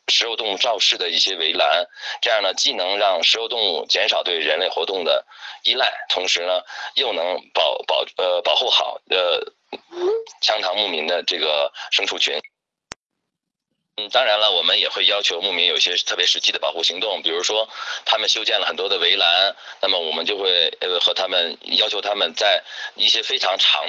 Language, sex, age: Chinese, male, 20-39